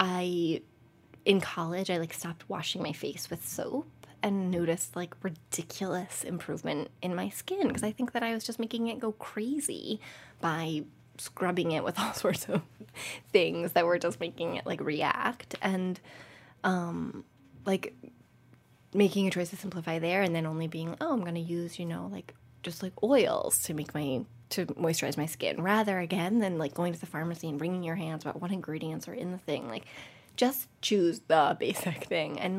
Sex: female